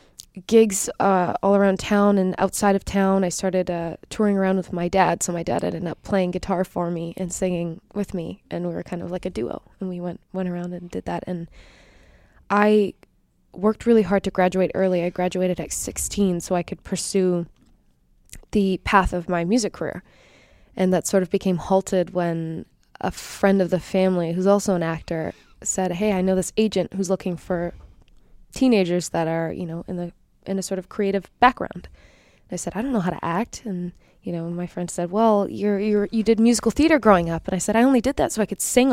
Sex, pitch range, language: female, 175-200 Hz, English